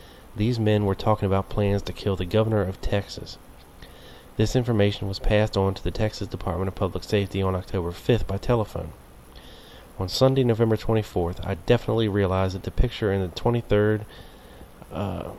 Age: 30-49